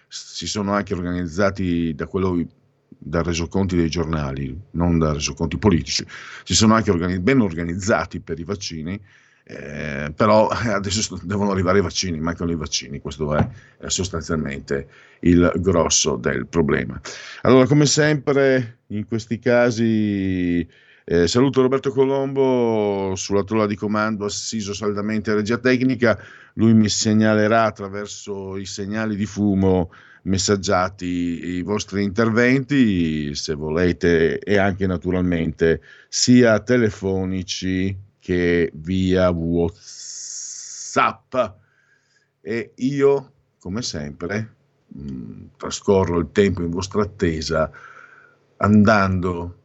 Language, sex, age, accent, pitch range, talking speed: Italian, male, 50-69, native, 85-110 Hz, 110 wpm